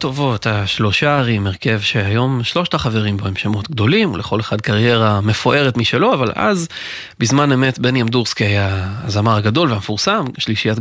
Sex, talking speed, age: male, 150 wpm, 30-49